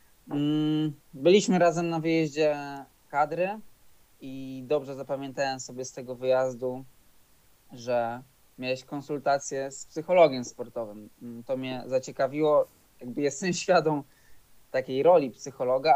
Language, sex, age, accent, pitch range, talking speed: Polish, male, 20-39, native, 125-150 Hz, 100 wpm